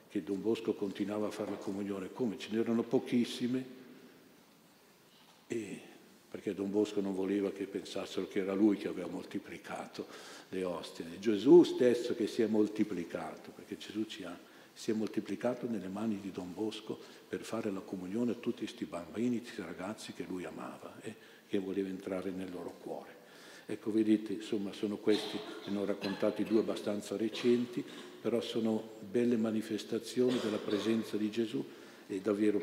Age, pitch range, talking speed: 50-69, 100-115 Hz, 165 wpm